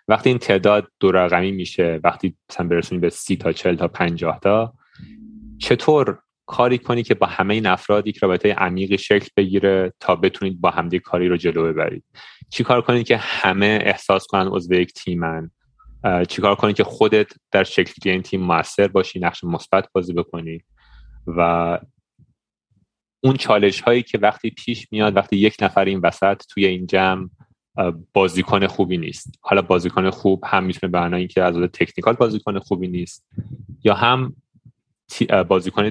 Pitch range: 90-110 Hz